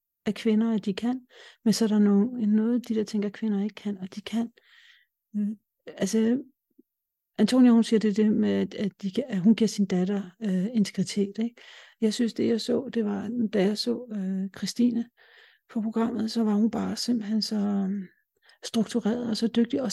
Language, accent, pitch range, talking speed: Danish, native, 200-230 Hz, 185 wpm